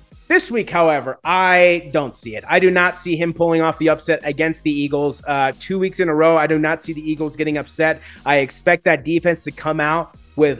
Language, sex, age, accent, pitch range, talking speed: English, male, 30-49, American, 145-185 Hz, 230 wpm